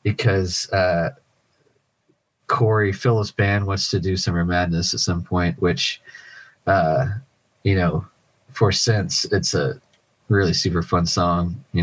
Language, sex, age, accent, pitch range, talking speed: English, male, 30-49, American, 90-130 Hz, 130 wpm